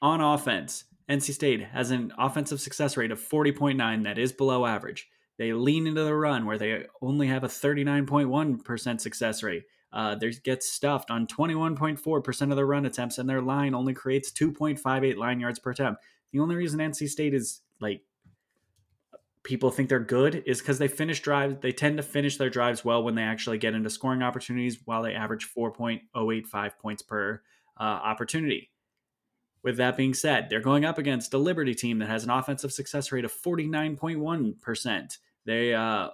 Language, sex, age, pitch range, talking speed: English, male, 20-39, 120-140 Hz, 180 wpm